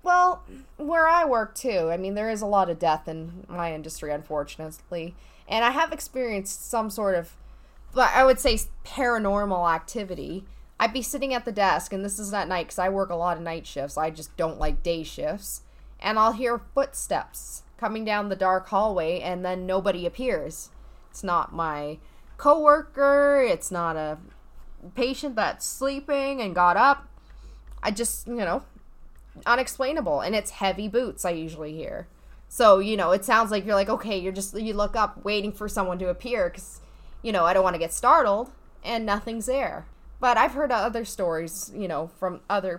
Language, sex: English, female